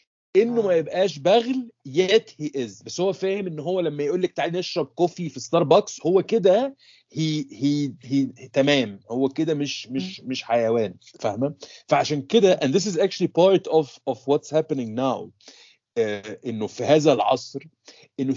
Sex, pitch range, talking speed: male, 135-180 Hz, 155 wpm